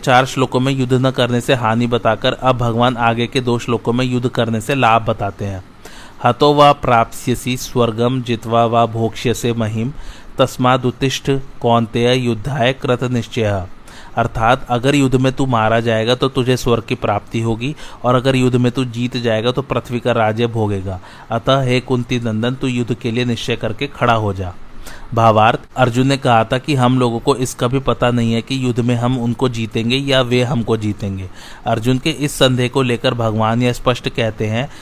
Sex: male